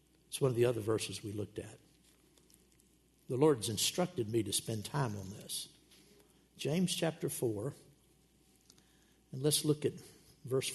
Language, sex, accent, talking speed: English, male, American, 145 wpm